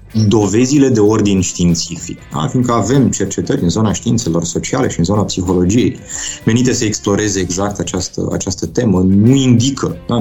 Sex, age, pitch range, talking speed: male, 20-39, 85-115 Hz, 155 wpm